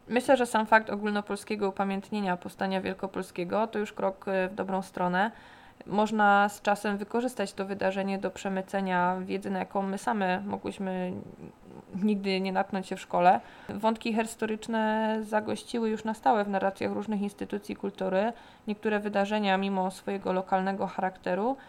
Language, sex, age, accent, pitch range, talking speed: Polish, female, 20-39, native, 190-215 Hz, 140 wpm